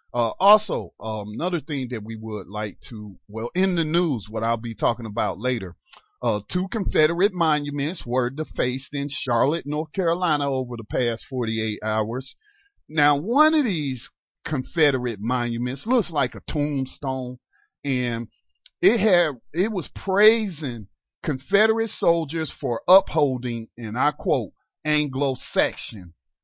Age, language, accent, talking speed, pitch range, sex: 40-59, English, American, 130 wpm, 125-175 Hz, male